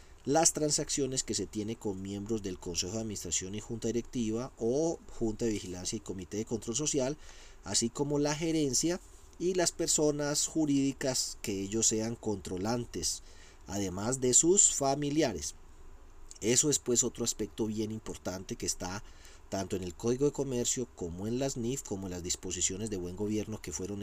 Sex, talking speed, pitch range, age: male, 165 wpm, 95-125 Hz, 40-59